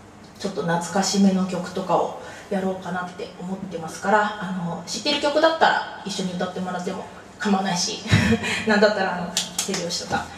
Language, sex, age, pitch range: Japanese, female, 20-39, 175-215 Hz